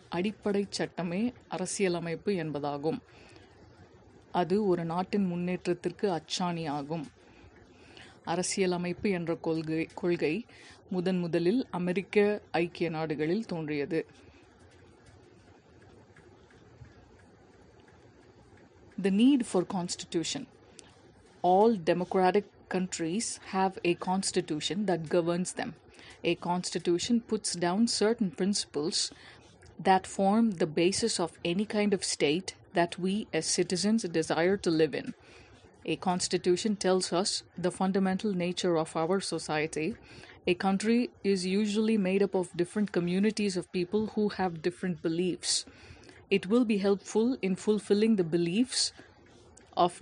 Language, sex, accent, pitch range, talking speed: English, female, Indian, 170-200 Hz, 95 wpm